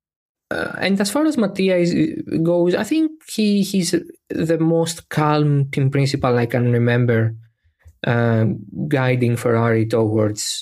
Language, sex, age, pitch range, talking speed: Greek, male, 20-39, 115-145 Hz, 135 wpm